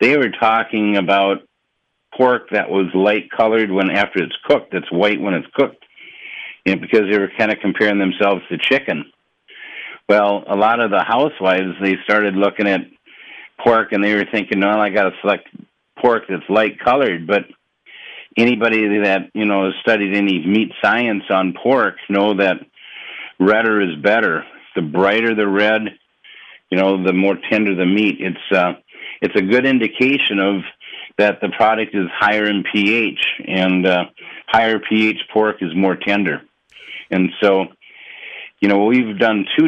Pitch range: 95-115 Hz